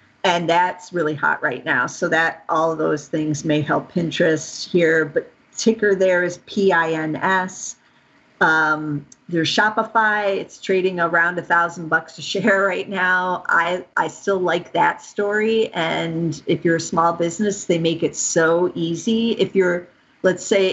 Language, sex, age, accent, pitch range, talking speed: English, female, 50-69, American, 165-195 Hz, 160 wpm